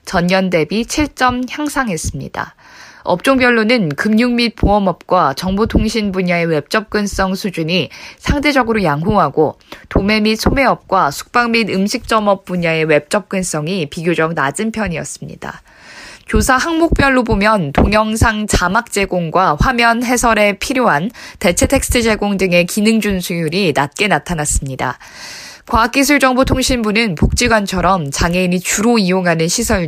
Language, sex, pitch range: Korean, female, 175-230 Hz